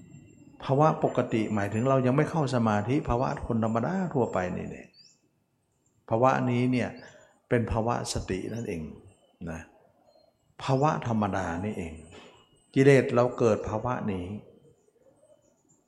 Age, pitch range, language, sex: 60-79, 100-135 Hz, Thai, male